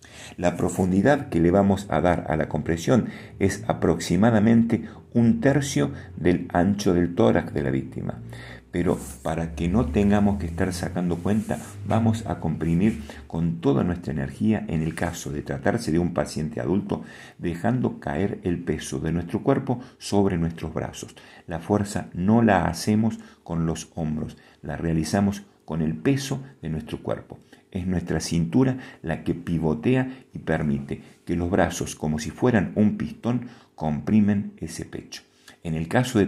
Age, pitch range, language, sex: 50-69, 80-110 Hz, Spanish, male